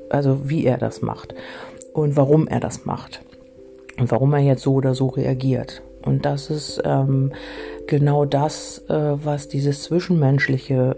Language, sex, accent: German, female, German